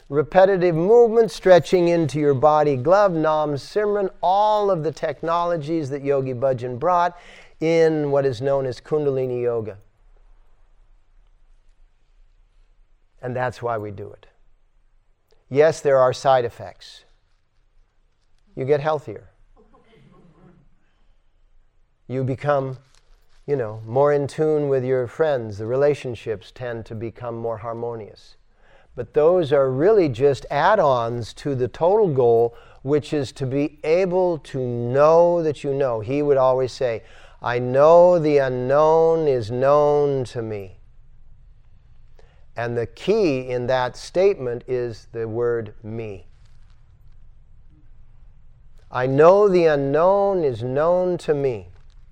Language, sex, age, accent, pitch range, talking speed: English, male, 50-69, American, 115-155 Hz, 120 wpm